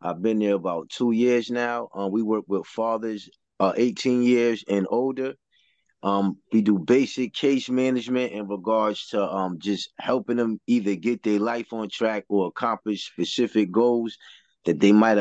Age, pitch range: 20-39, 105-125 Hz